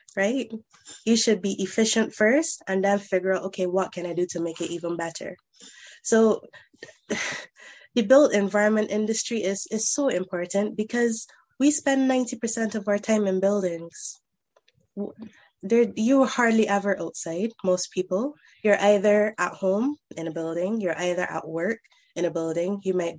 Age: 20-39